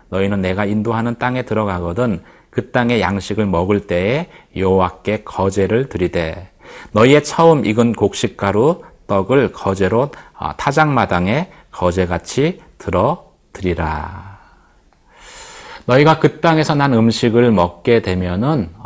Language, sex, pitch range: Korean, male, 95-130 Hz